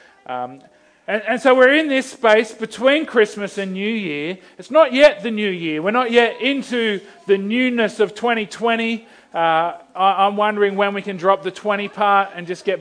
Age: 40-59